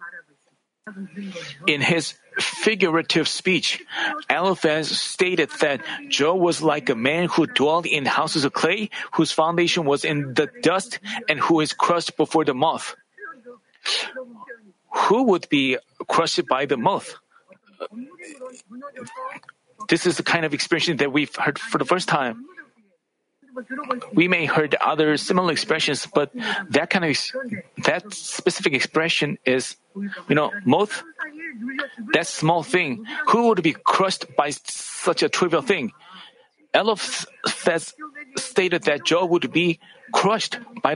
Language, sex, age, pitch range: Korean, male, 40-59, 160-240 Hz